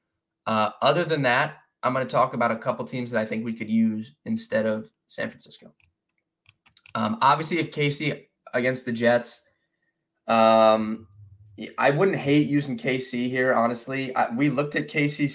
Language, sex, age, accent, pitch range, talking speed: English, male, 20-39, American, 115-145 Hz, 160 wpm